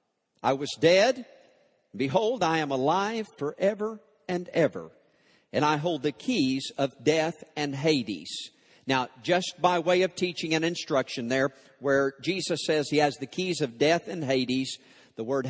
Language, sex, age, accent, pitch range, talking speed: English, male, 50-69, American, 130-160 Hz, 160 wpm